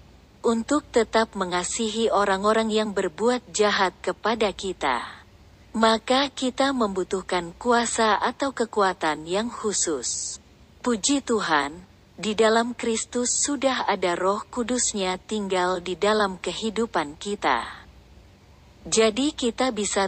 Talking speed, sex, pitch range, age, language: 100 wpm, female, 180-230 Hz, 40-59, Indonesian